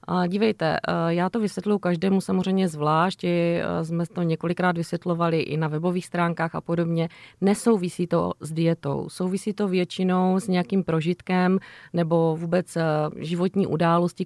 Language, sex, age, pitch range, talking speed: Czech, female, 30-49, 170-190 Hz, 130 wpm